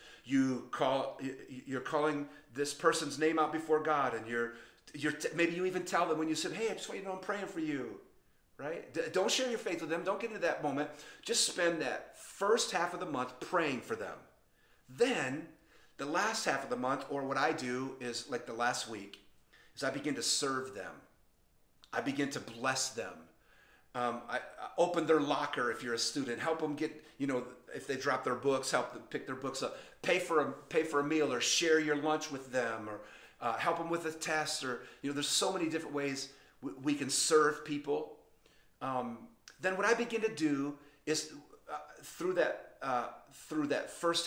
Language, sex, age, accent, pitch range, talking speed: English, male, 40-59, American, 130-160 Hz, 215 wpm